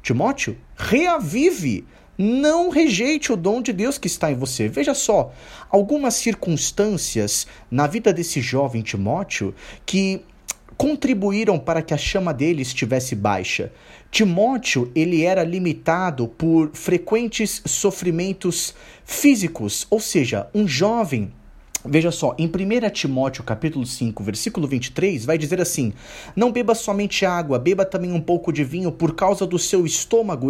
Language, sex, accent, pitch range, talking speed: Portuguese, male, Brazilian, 145-220 Hz, 135 wpm